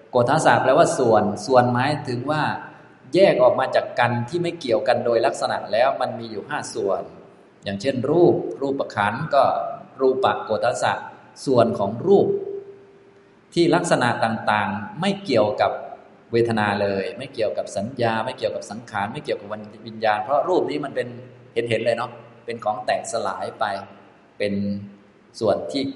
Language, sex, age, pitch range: Thai, male, 20-39, 105-135 Hz